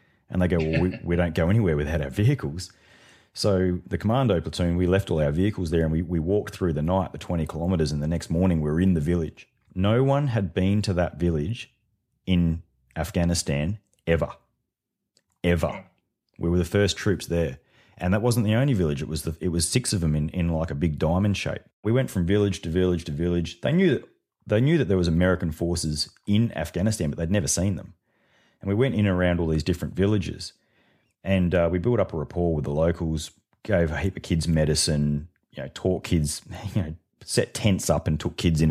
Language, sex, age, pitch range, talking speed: English, male, 30-49, 80-95 Hz, 220 wpm